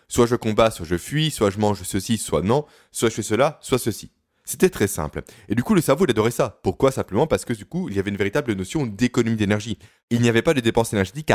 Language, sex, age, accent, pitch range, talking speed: French, male, 20-39, French, 100-140 Hz, 265 wpm